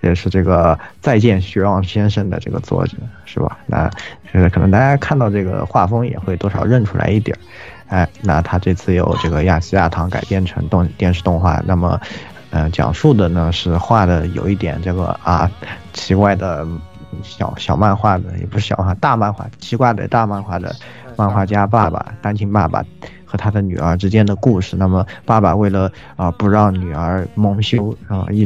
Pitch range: 90-110 Hz